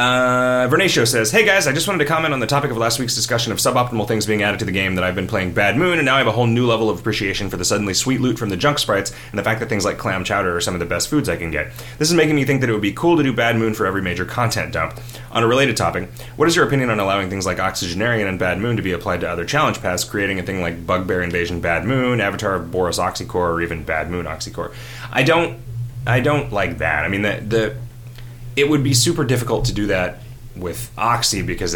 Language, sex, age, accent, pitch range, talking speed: English, male, 30-49, American, 95-120 Hz, 275 wpm